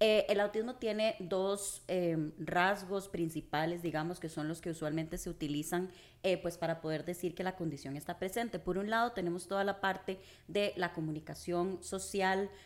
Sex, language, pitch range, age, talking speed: female, Spanish, 165-195 Hz, 20-39, 175 wpm